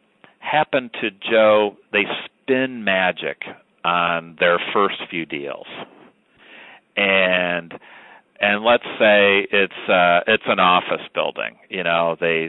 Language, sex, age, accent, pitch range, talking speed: English, male, 40-59, American, 85-110 Hz, 110 wpm